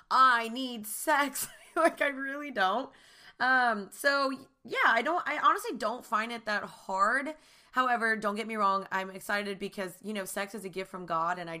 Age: 20-39